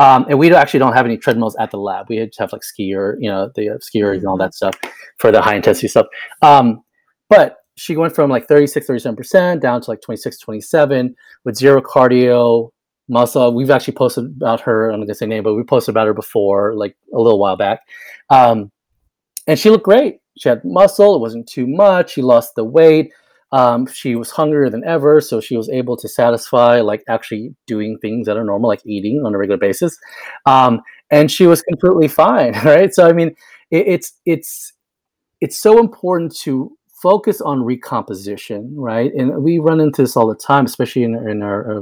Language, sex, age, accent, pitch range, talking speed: English, male, 30-49, American, 110-155 Hz, 200 wpm